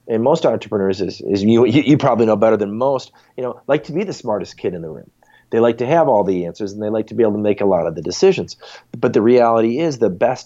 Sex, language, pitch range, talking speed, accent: male, English, 105-125 Hz, 285 wpm, American